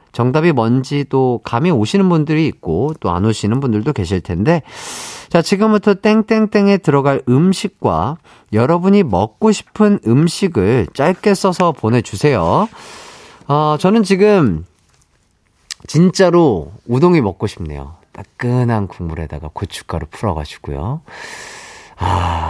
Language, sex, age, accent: Korean, male, 40-59, native